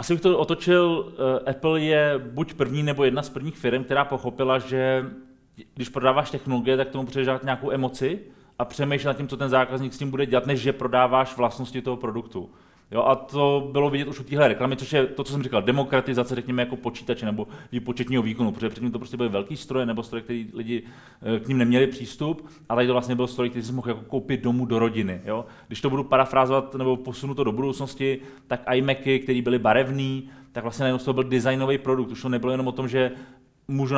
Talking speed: 215 wpm